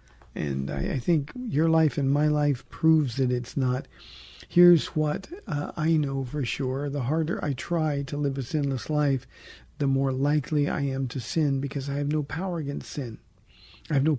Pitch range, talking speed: 130-155 Hz, 195 wpm